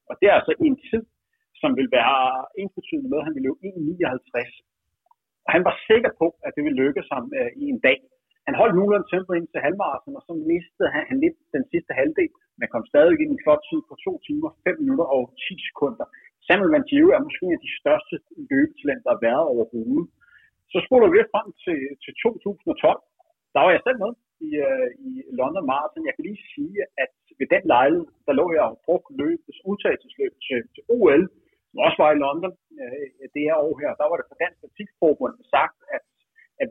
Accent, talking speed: native, 205 wpm